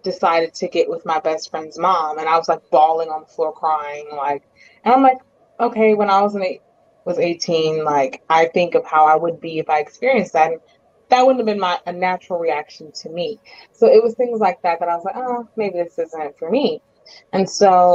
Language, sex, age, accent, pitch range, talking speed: English, female, 20-39, American, 160-225 Hz, 235 wpm